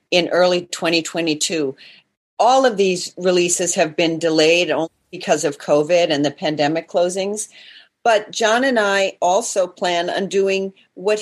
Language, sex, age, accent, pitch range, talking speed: English, female, 40-59, American, 180-215 Hz, 145 wpm